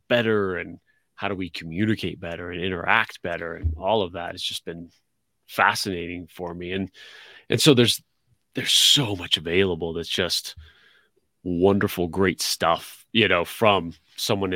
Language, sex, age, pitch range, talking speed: English, male, 30-49, 90-105 Hz, 155 wpm